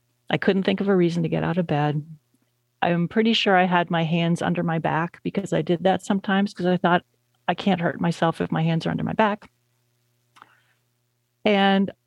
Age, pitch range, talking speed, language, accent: 40-59, 155-195 Hz, 205 wpm, English, American